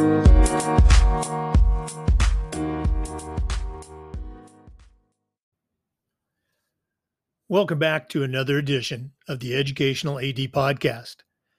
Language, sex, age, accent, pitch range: English, male, 50-69, American, 130-165 Hz